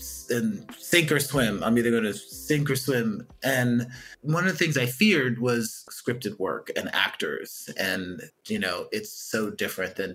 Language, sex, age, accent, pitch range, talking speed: English, male, 30-49, American, 110-135 Hz, 175 wpm